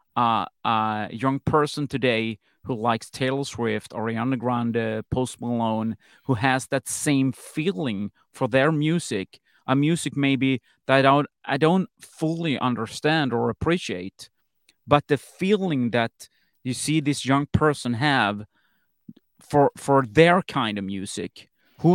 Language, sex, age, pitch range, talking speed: English, male, 30-49, 115-140 Hz, 140 wpm